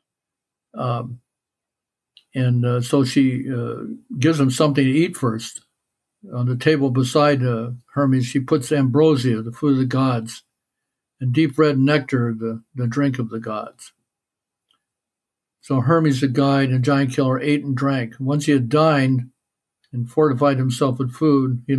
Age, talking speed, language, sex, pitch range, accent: 60-79, 155 wpm, English, male, 125-150 Hz, American